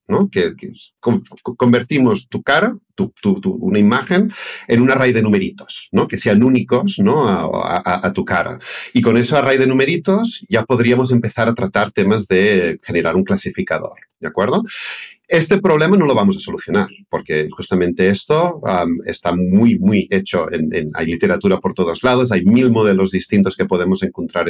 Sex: male